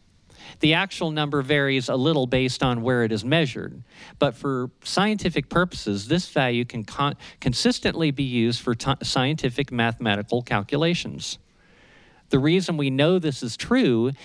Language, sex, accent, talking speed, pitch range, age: English, male, American, 140 wpm, 120-155 Hz, 50-69